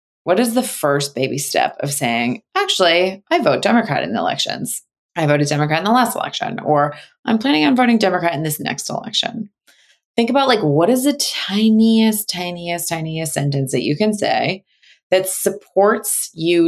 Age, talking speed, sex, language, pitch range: 20-39, 175 wpm, female, English, 150-205 Hz